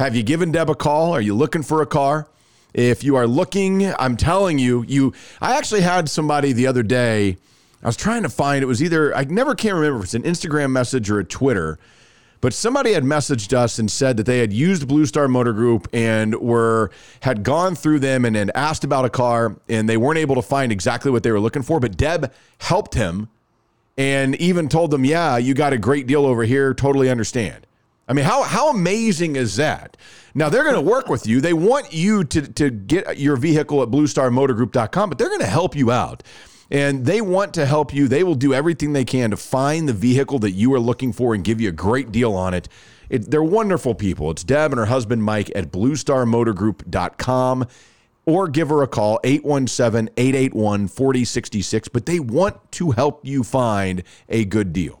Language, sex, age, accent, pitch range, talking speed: English, male, 40-59, American, 115-150 Hz, 210 wpm